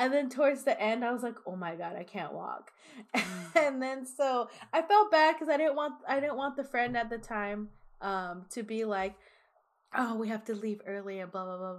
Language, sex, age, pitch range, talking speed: English, female, 20-39, 195-260 Hz, 235 wpm